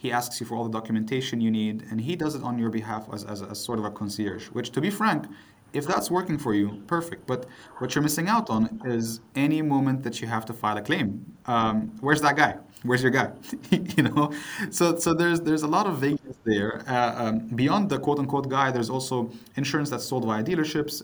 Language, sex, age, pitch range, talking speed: English, male, 20-39, 110-135 Hz, 235 wpm